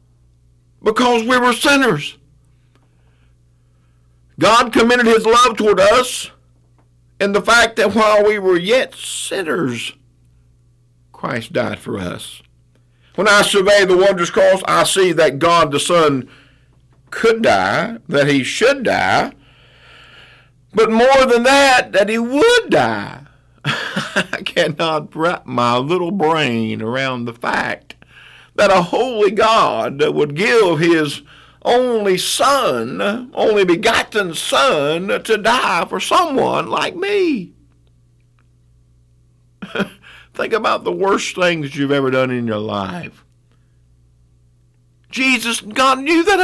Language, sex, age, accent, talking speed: English, male, 50-69, American, 120 wpm